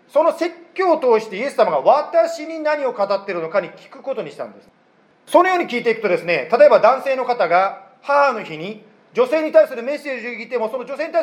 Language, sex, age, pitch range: Japanese, male, 40-59, 200-290 Hz